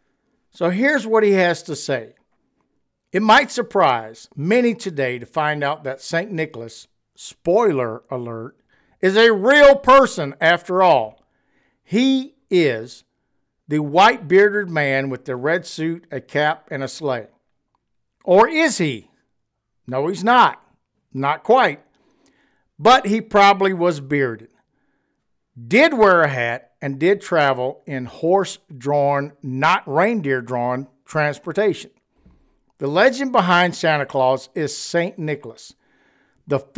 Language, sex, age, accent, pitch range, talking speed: English, male, 60-79, American, 135-195 Hz, 120 wpm